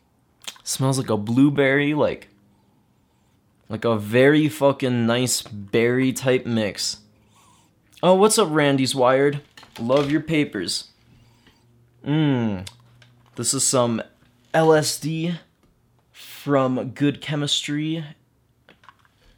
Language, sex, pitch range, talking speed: English, male, 120-155 Hz, 90 wpm